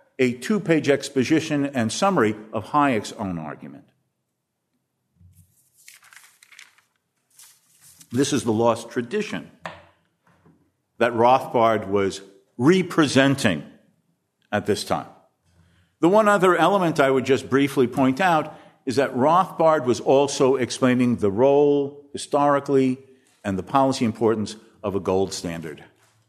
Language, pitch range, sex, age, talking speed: English, 120-155 Hz, male, 50-69, 110 wpm